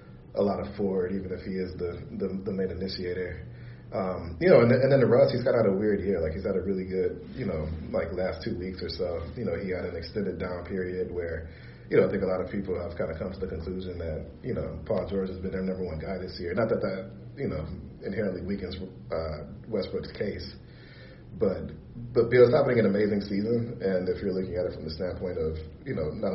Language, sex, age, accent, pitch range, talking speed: English, male, 30-49, American, 80-95 Hz, 250 wpm